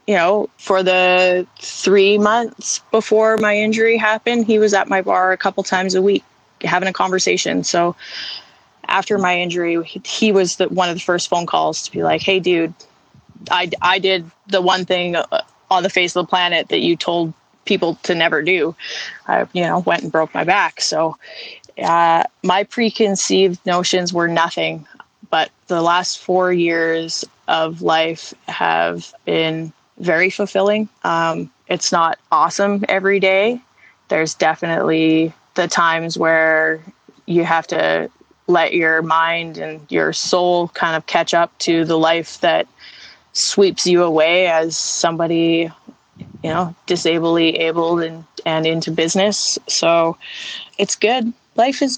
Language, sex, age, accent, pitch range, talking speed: English, female, 20-39, American, 165-195 Hz, 150 wpm